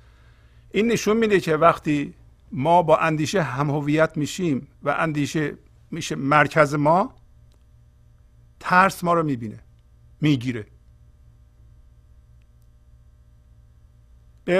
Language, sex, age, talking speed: Persian, male, 50-69, 90 wpm